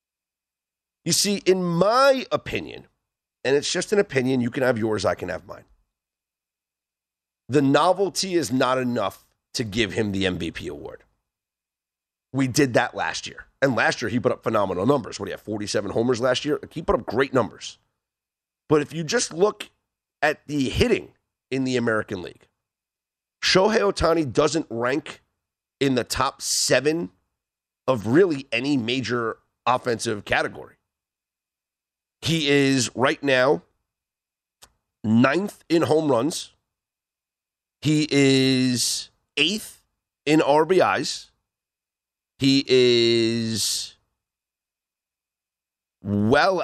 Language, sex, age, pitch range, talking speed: English, male, 40-59, 90-150 Hz, 125 wpm